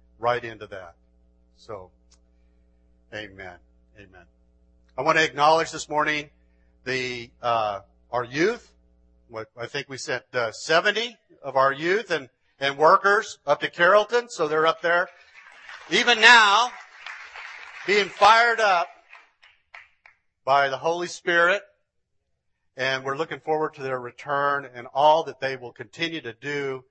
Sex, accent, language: male, American, English